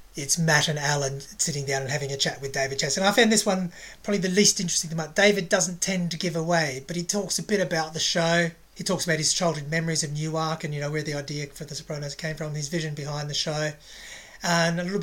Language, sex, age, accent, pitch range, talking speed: English, male, 30-49, Australian, 155-180 Hz, 265 wpm